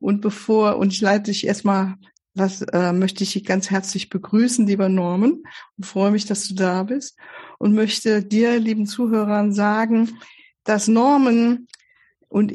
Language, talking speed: German, 160 wpm